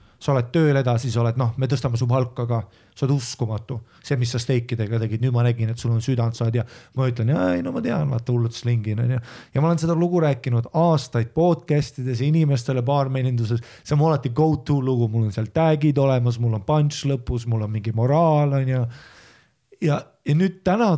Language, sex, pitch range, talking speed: English, male, 115-145 Hz, 195 wpm